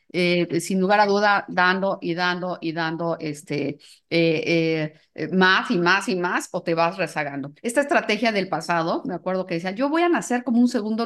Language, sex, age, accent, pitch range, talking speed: Spanish, female, 40-59, Mexican, 165-215 Hz, 200 wpm